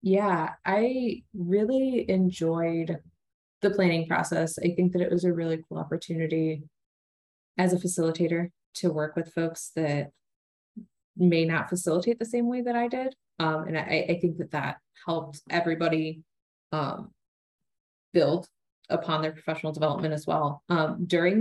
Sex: female